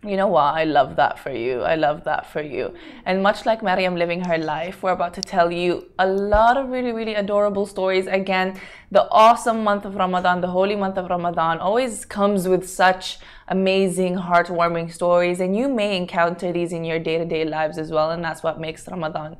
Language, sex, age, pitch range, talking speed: Arabic, female, 20-39, 170-205 Hz, 205 wpm